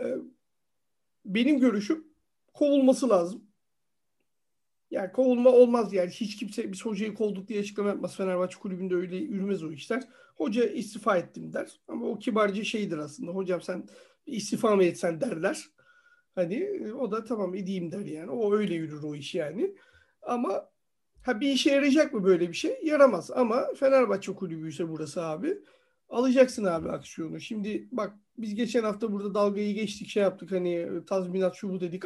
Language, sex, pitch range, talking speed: Turkish, male, 190-250 Hz, 155 wpm